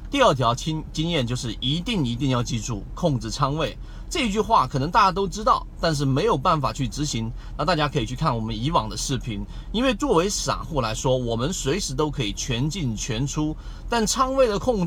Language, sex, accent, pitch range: Chinese, male, native, 130-180 Hz